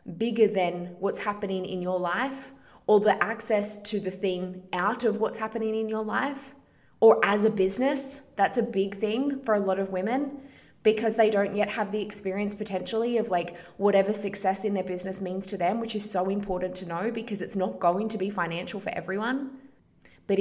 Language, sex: English, female